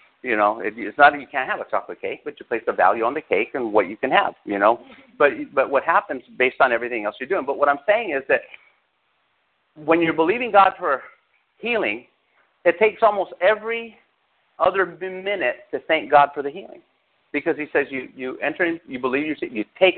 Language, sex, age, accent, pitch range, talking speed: English, male, 50-69, American, 145-220 Hz, 215 wpm